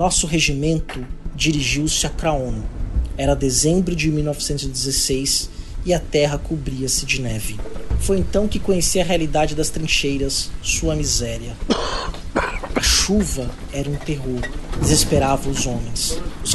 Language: Portuguese